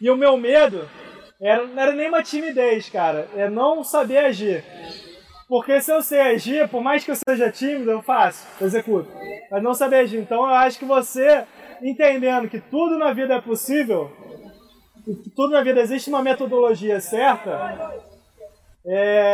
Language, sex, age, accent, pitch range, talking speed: Portuguese, male, 20-39, Brazilian, 225-275 Hz, 170 wpm